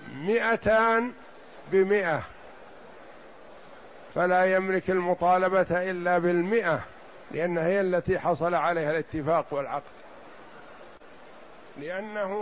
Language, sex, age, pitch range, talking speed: Arabic, male, 50-69, 165-200 Hz, 70 wpm